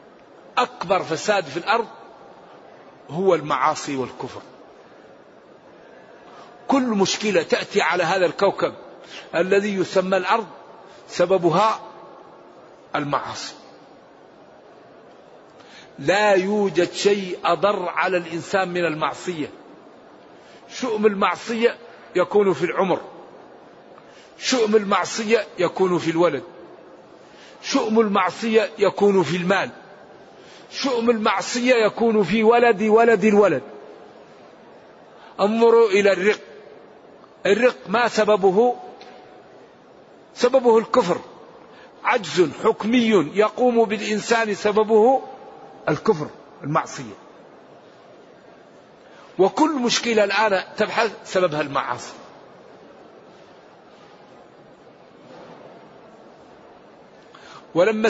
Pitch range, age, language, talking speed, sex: 190-230 Hz, 50-69, Arabic, 70 wpm, male